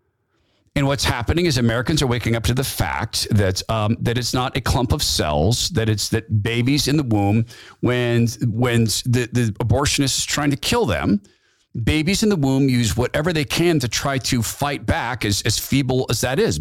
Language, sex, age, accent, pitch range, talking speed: English, male, 50-69, American, 110-135 Hz, 200 wpm